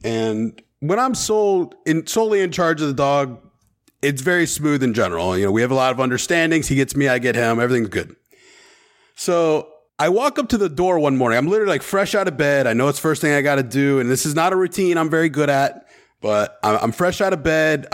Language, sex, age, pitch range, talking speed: English, male, 30-49, 125-170 Hz, 245 wpm